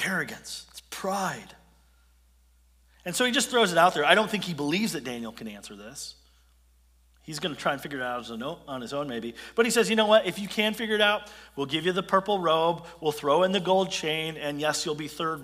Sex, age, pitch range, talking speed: male, 40-59, 130-195 Hz, 255 wpm